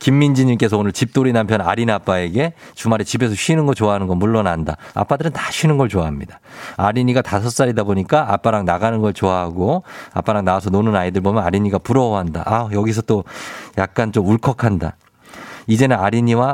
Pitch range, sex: 100-140 Hz, male